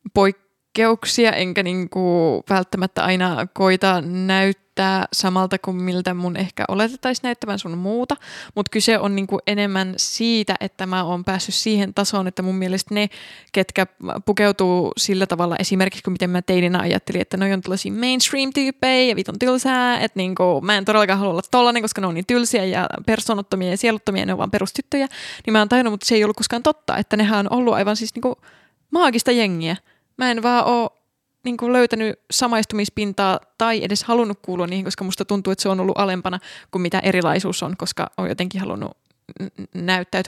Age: 20-39